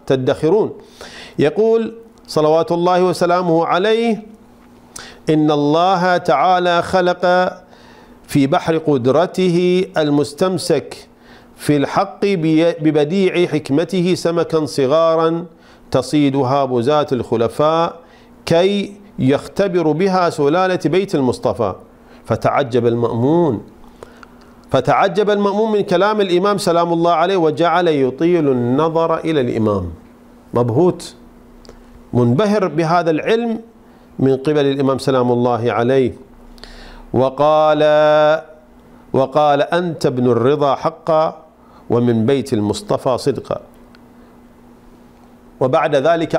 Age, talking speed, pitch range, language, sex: 50-69, 85 wpm, 135-180 Hz, Arabic, male